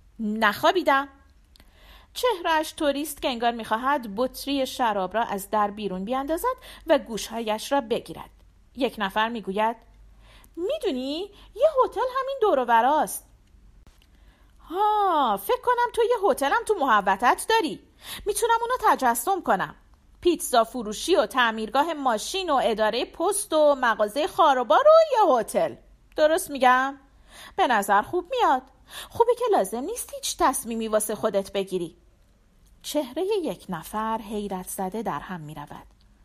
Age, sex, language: 40-59, female, Persian